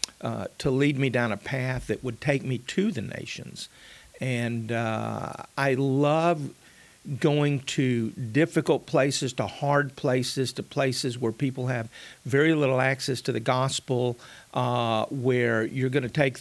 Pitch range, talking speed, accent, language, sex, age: 115-135 Hz, 155 wpm, American, English, male, 50-69